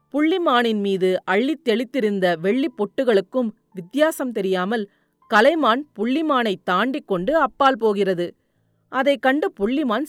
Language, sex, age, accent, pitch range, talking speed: Tamil, female, 40-59, native, 205-285 Hz, 100 wpm